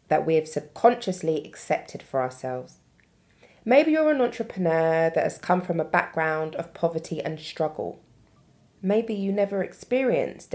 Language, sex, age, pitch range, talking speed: English, female, 20-39, 160-215 Hz, 140 wpm